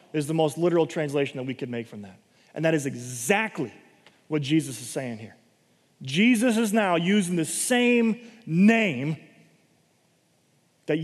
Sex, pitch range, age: male, 145-200 Hz, 30-49